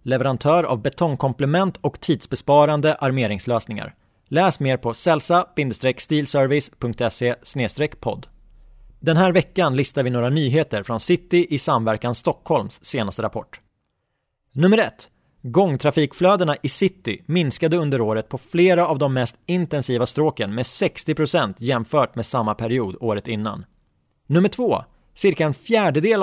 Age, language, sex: 30-49, Swedish, male